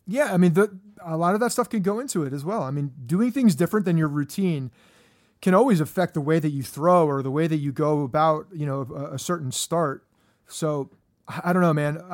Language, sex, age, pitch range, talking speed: English, male, 30-49, 145-180 Hz, 240 wpm